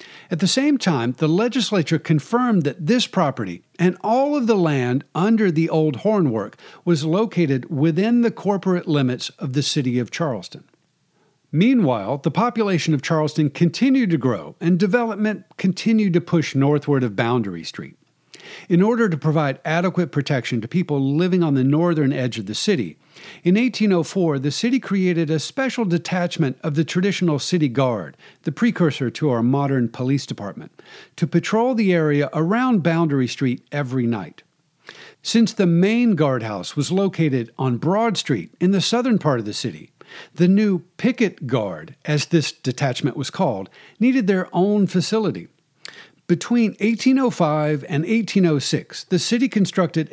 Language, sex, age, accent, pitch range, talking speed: English, male, 50-69, American, 145-200 Hz, 155 wpm